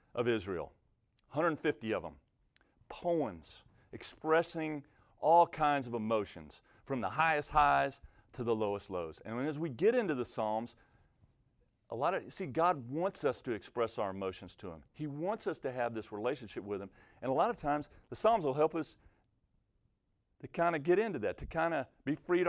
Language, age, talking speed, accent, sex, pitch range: English, 40-59, 185 wpm, American, male, 105-150 Hz